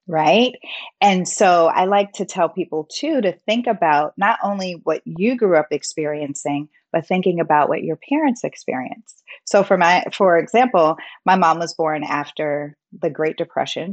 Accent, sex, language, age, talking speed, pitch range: American, female, English, 30-49, 170 wpm, 155-215 Hz